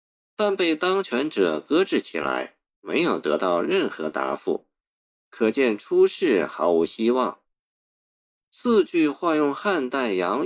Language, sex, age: Chinese, male, 50-69